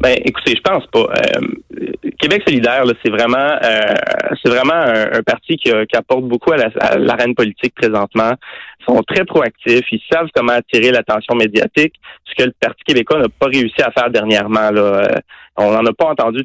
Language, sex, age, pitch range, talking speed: French, male, 30-49, 110-135 Hz, 200 wpm